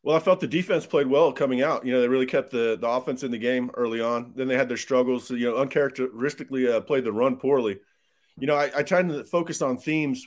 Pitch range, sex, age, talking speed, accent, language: 115-140 Hz, male, 30-49, 255 wpm, American, English